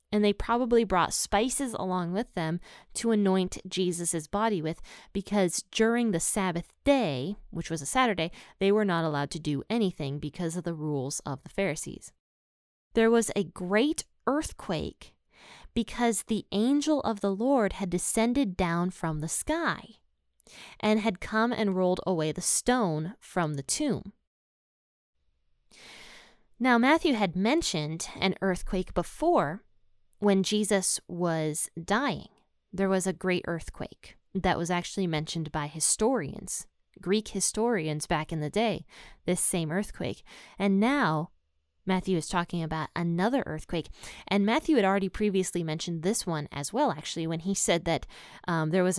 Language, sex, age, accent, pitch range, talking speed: English, female, 20-39, American, 165-215 Hz, 150 wpm